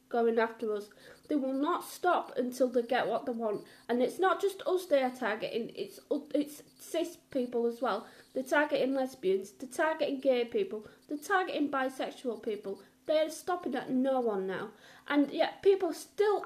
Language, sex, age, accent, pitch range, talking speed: English, female, 30-49, British, 235-315 Hz, 175 wpm